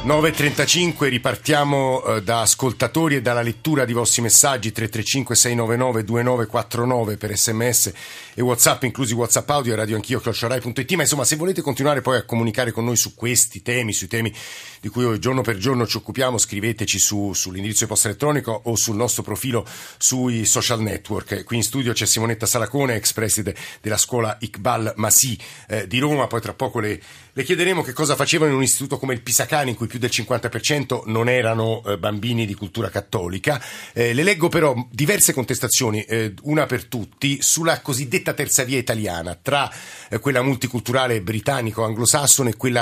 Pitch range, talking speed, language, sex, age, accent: 110-130 Hz, 170 wpm, Italian, male, 50-69, native